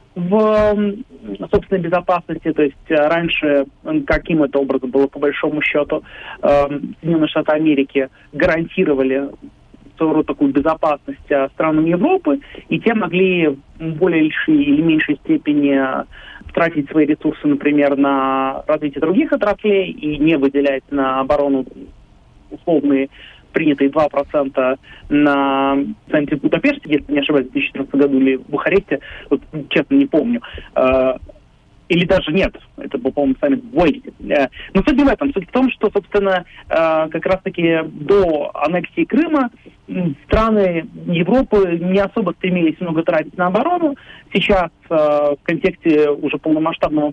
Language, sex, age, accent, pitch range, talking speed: Russian, male, 30-49, native, 145-180 Hz, 125 wpm